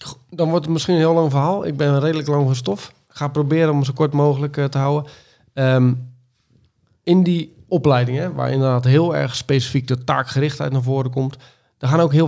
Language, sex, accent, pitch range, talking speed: Dutch, male, Dutch, 125-145 Hz, 200 wpm